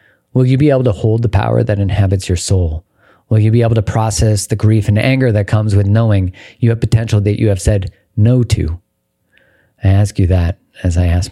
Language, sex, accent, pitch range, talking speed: English, male, American, 95-115 Hz, 225 wpm